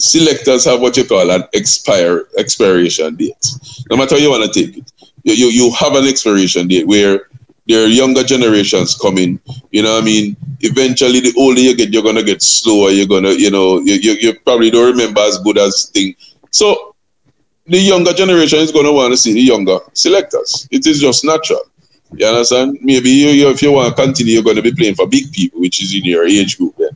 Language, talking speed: English, 225 wpm